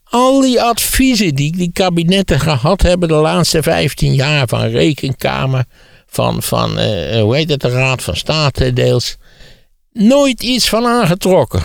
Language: Dutch